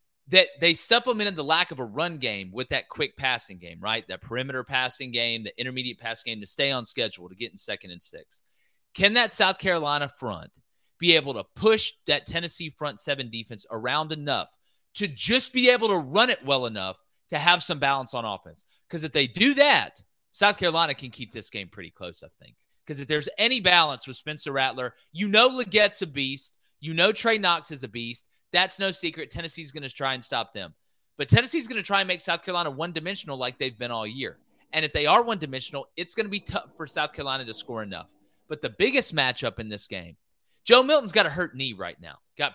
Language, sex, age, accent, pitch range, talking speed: English, male, 30-49, American, 125-185 Hz, 220 wpm